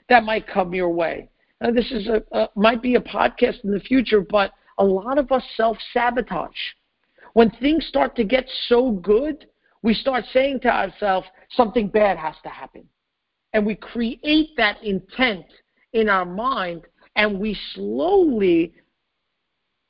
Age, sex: 50-69, male